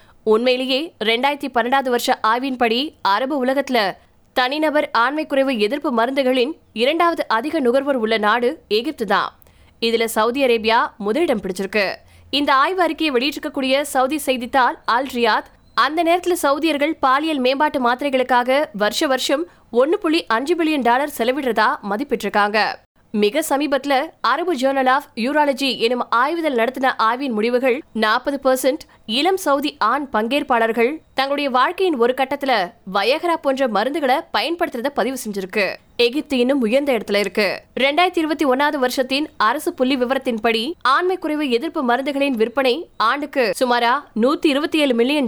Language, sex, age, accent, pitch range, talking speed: Tamil, female, 20-39, native, 235-295 Hz, 100 wpm